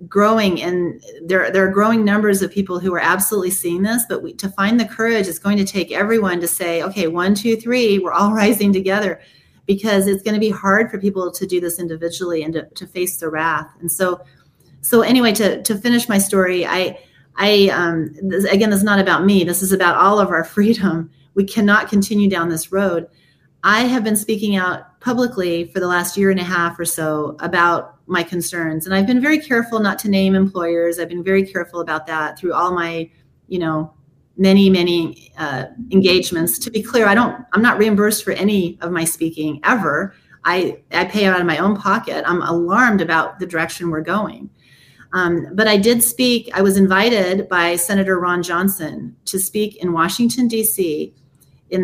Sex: female